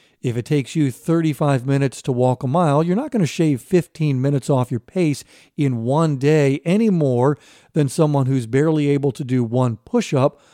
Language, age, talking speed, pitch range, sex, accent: English, 50-69, 195 wpm, 130-160 Hz, male, American